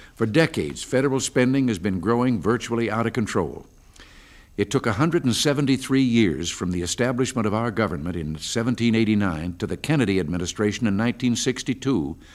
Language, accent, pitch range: English, American, 100-130 Hz